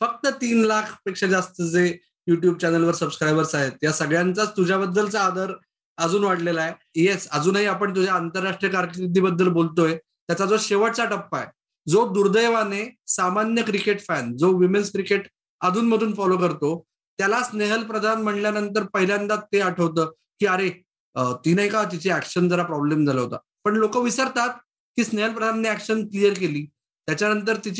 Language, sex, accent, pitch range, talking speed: Marathi, male, native, 180-225 Hz, 110 wpm